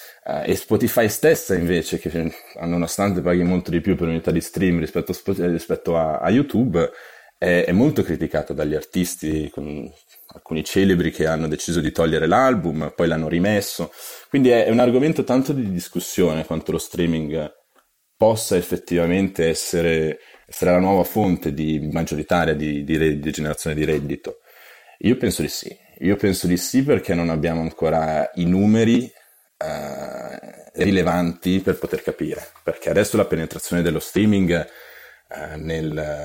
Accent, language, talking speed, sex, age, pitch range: native, Italian, 145 wpm, male, 30-49, 80-95 Hz